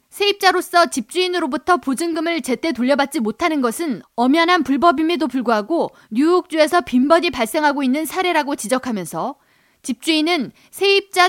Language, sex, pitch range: Korean, female, 255-350 Hz